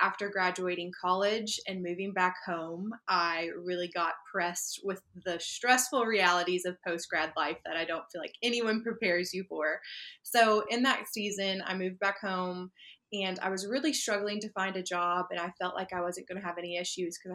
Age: 20-39